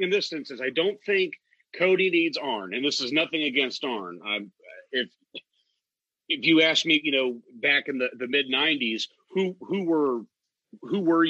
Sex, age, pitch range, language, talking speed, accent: male, 40-59, 135-225 Hz, English, 185 wpm, American